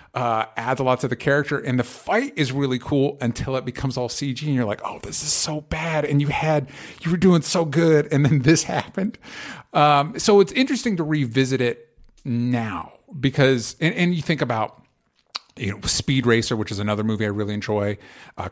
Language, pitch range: English, 120-160 Hz